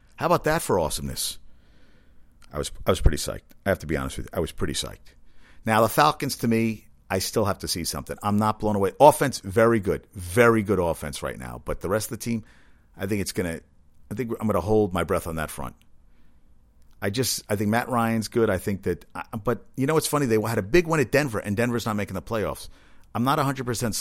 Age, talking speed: 50-69, 250 wpm